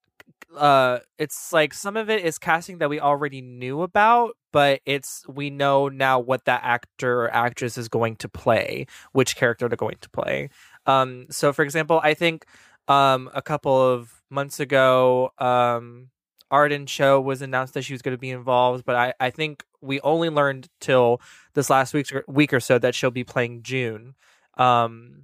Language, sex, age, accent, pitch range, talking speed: English, male, 20-39, American, 125-150 Hz, 180 wpm